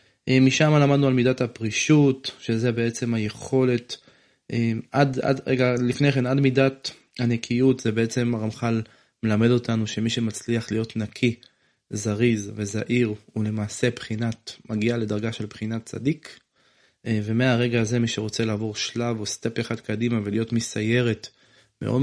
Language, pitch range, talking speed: Hebrew, 110-125 Hz, 130 wpm